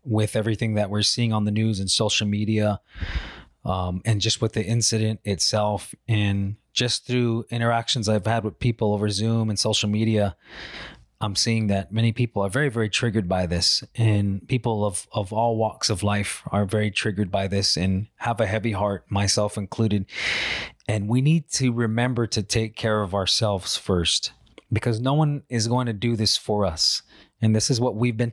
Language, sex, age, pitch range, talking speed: English, male, 20-39, 105-120 Hz, 190 wpm